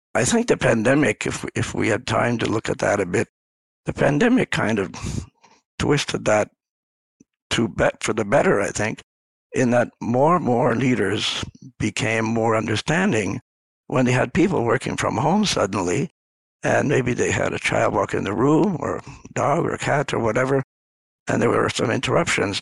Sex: male